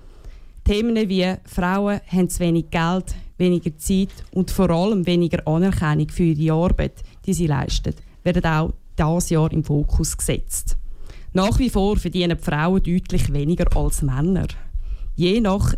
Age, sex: 20-39, female